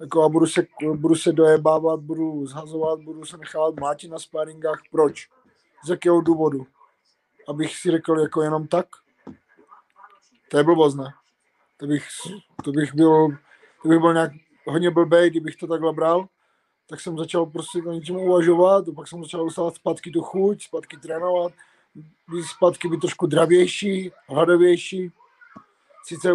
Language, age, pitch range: Czech, 20-39, 155-175 Hz